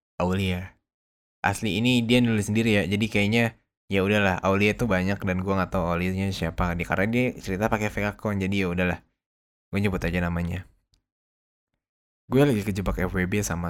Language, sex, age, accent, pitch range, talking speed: English, male, 20-39, Indonesian, 90-110 Hz, 165 wpm